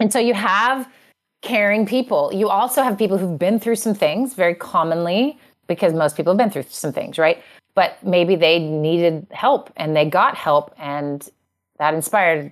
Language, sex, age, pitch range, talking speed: English, female, 30-49, 155-220 Hz, 180 wpm